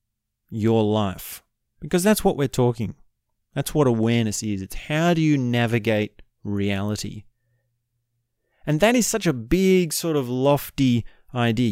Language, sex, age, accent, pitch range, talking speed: English, male, 30-49, Australian, 100-135 Hz, 140 wpm